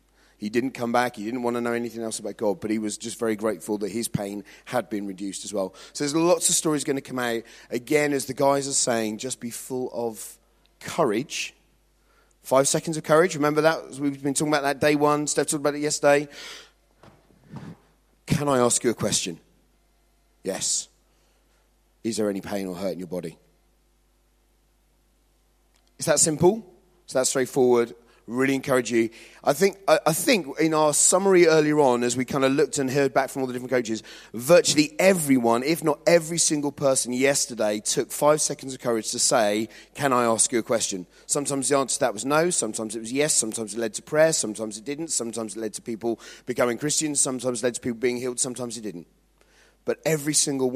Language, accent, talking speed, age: English, British, 205 wpm, 30-49